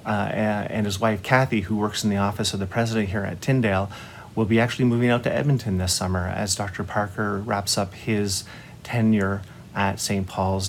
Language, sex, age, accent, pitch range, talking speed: English, male, 30-49, American, 100-115 Hz, 195 wpm